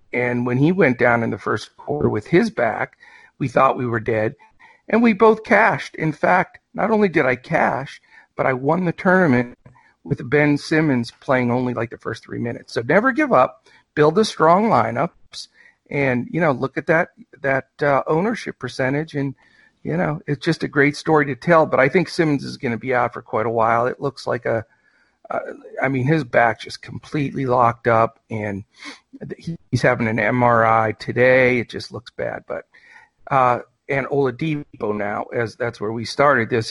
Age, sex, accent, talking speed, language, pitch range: 50-69, male, American, 195 wpm, English, 120-155 Hz